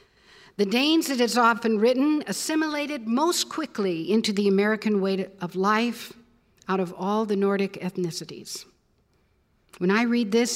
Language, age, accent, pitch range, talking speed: English, 60-79, American, 195-235 Hz, 140 wpm